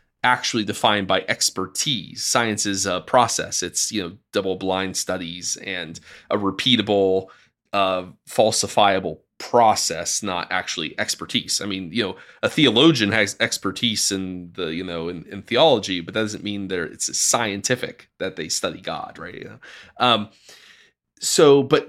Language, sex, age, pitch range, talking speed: English, male, 20-39, 100-130 Hz, 150 wpm